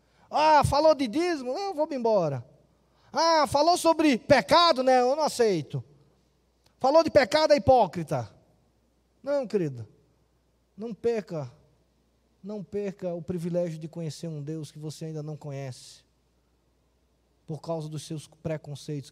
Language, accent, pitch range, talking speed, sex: Portuguese, Brazilian, 140-210 Hz, 135 wpm, male